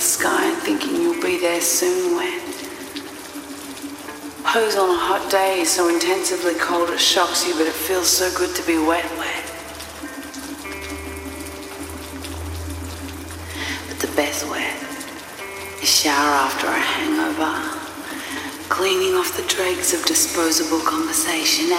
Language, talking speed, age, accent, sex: English, 120 wpm, 30-49, Australian, female